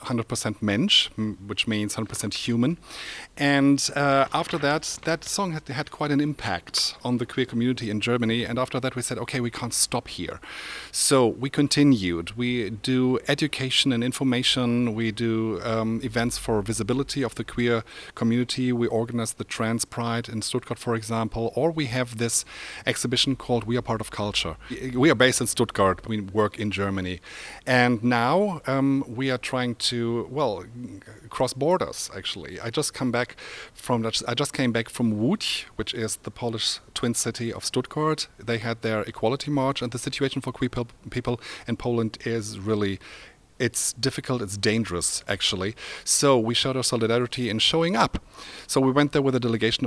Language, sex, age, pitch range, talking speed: French, male, 40-59, 110-130 Hz, 175 wpm